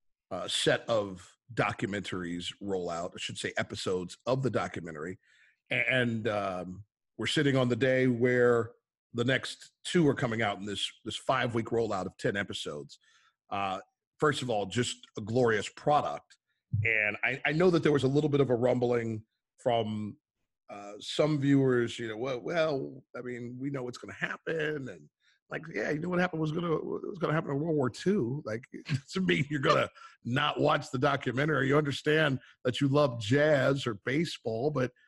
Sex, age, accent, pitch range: male, 40-59, American, 115-150 Hz